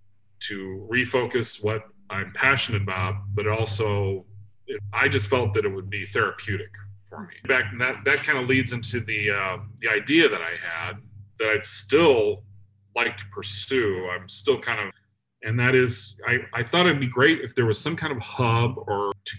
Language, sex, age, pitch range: English, male, 30-49, 100-125 Hz